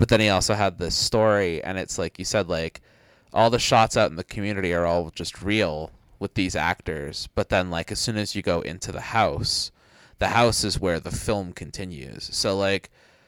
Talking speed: 215 wpm